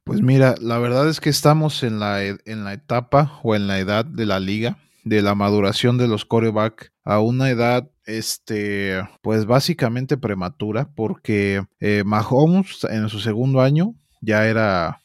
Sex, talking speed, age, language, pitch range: male, 170 wpm, 30-49, Spanish, 105-130 Hz